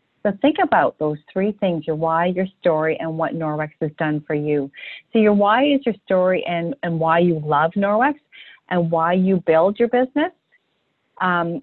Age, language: 40-59, English